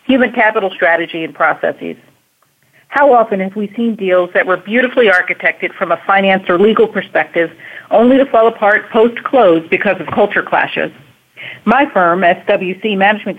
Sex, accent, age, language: female, American, 50-69, English